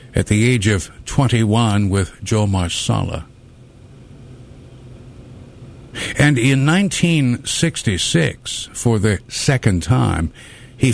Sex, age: male, 60-79